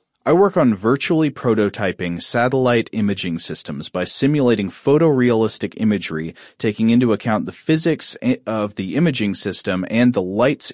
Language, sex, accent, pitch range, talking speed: English, male, American, 100-125 Hz, 135 wpm